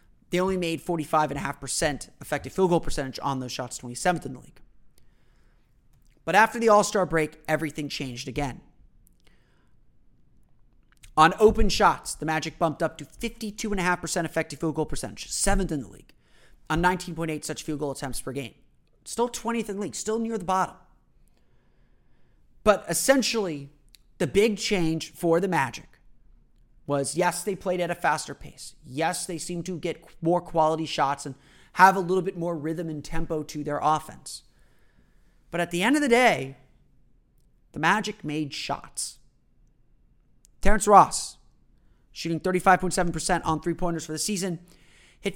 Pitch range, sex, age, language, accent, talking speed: 150-190 Hz, male, 30-49, English, American, 150 wpm